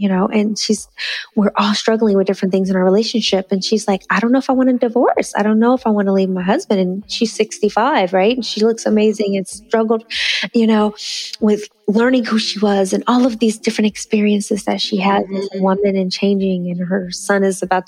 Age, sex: 20-39, female